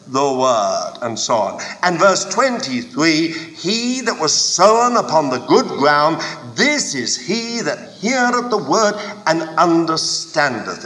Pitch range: 160-220 Hz